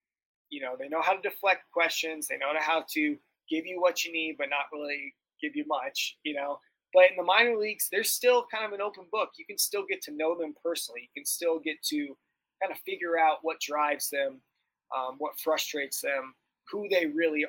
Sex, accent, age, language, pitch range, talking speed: male, American, 20-39, English, 150-185 Hz, 220 wpm